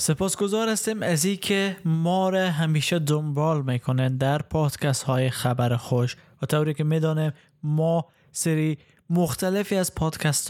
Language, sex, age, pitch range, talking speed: Persian, male, 20-39, 140-170 Hz, 135 wpm